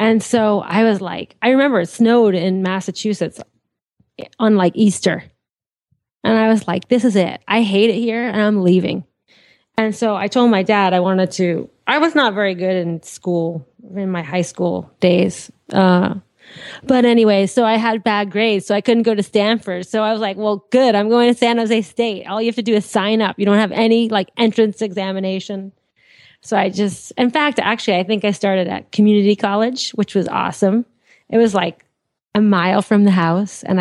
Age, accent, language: 20-39, American, English